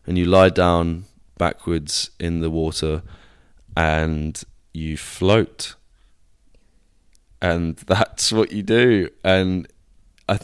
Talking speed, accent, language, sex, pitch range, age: 105 wpm, British, English, male, 80-95 Hz, 20-39